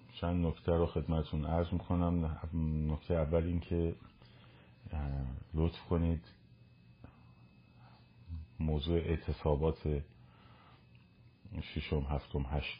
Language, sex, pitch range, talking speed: Persian, male, 75-85 Hz, 90 wpm